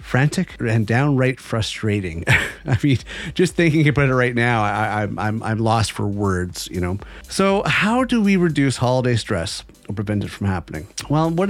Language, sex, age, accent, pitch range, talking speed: English, male, 30-49, American, 105-150 Hz, 185 wpm